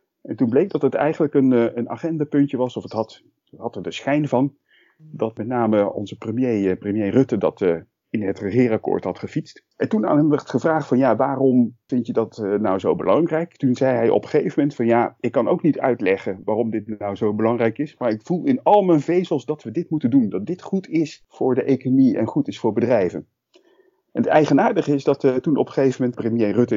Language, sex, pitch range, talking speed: Dutch, male, 110-150 Hz, 230 wpm